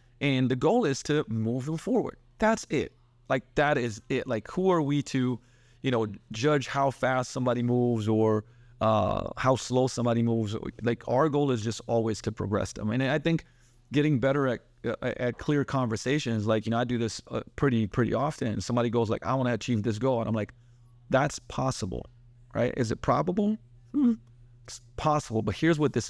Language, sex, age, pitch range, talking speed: English, male, 30-49, 110-130 Hz, 200 wpm